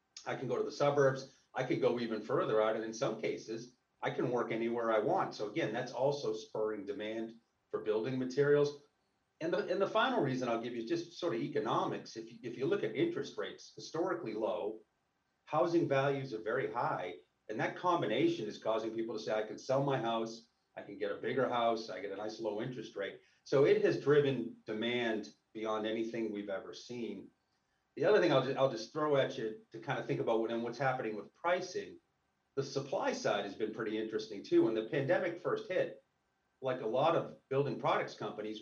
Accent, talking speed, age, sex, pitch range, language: American, 215 wpm, 40-59, male, 110-150 Hz, English